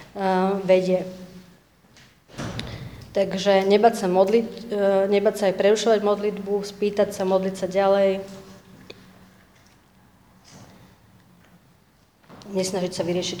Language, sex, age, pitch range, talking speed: Slovak, female, 30-49, 190-215 Hz, 80 wpm